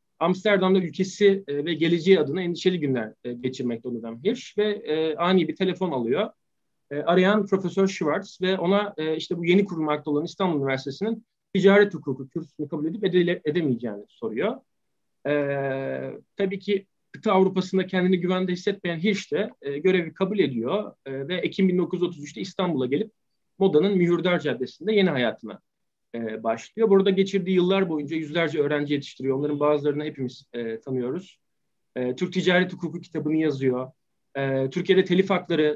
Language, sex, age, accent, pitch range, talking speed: Turkish, male, 40-59, native, 145-190 Hz, 135 wpm